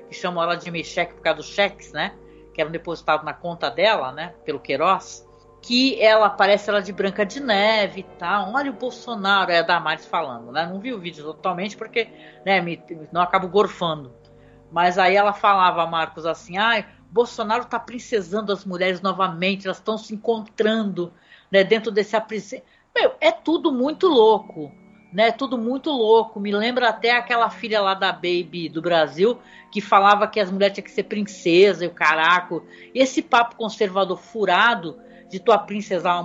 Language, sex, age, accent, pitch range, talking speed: Portuguese, female, 60-79, Brazilian, 180-235 Hz, 180 wpm